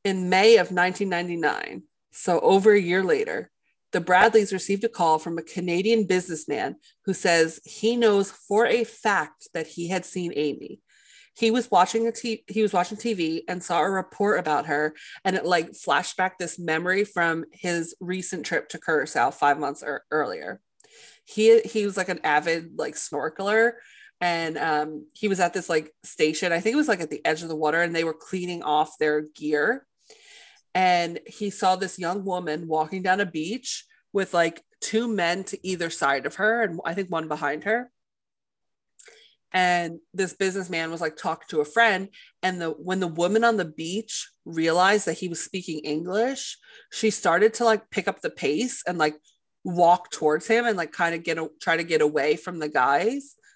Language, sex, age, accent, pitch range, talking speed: English, female, 30-49, American, 165-220 Hz, 190 wpm